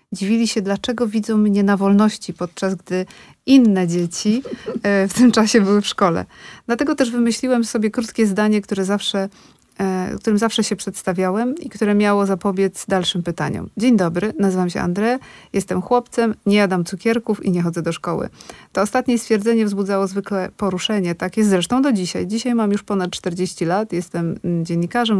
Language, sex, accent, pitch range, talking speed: Polish, female, native, 185-230 Hz, 165 wpm